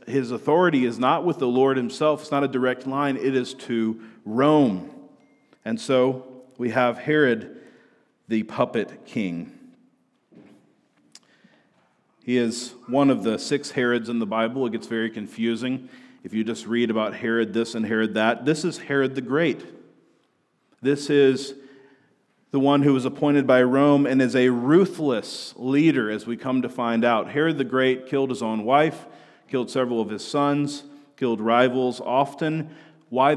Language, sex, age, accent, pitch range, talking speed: English, male, 40-59, American, 120-145 Hz, 160 wpm